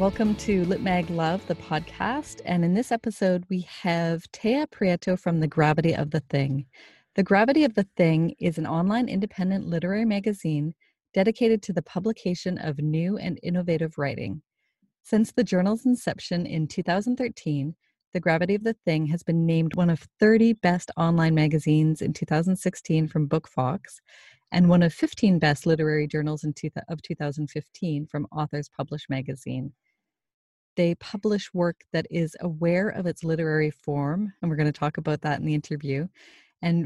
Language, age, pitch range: English, 30-49, 155-195 Hz